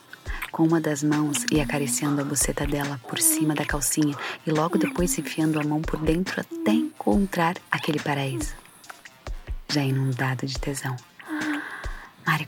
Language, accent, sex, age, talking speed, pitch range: Portuguese, Brazilian, female, 20-39, 150 wpm, 145-170 Hz